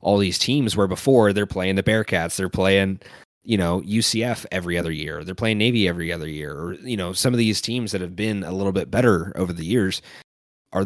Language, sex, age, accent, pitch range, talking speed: English, male, 20-39, American, 90-120 Hz, 220 wpm